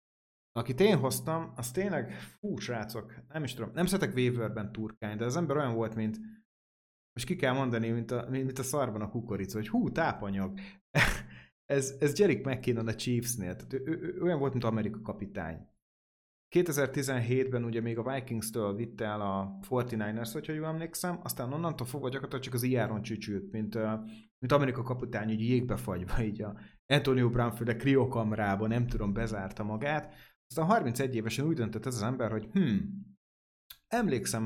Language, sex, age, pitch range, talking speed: Hungarian, male, 30-49, 110-140 Hz, 160 wpm